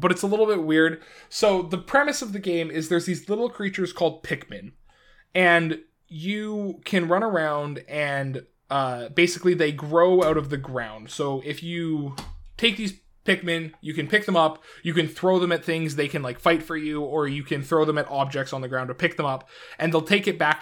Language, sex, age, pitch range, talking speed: English, male, 20-39, 145-185 Hz, 220 wpm